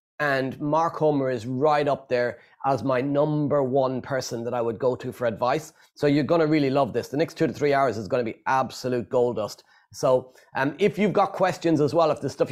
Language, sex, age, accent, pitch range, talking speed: English, male, 30-49, Irish, 135-160 Hz, 245 wpm